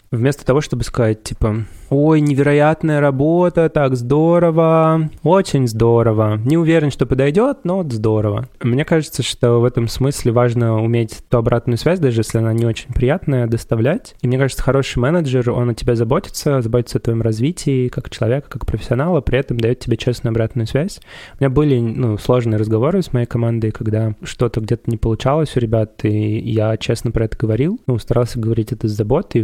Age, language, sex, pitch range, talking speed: 20-39, Russian, male, 115-135 Hz, 180 wpm